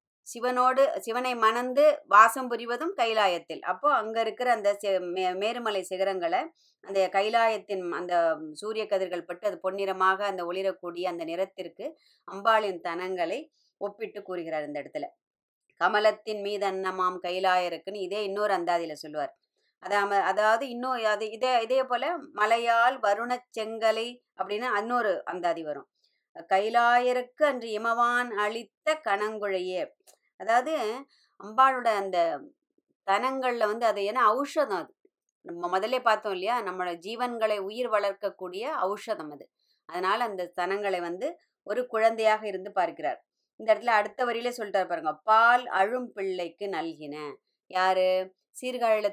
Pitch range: 190-245 Hz